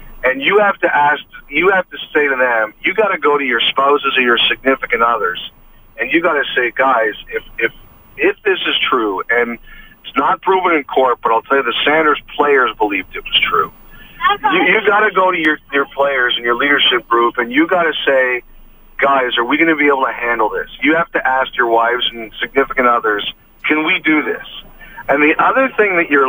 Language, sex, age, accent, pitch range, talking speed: English, male, 40-59, American, 130-180 Hz, 225 wpm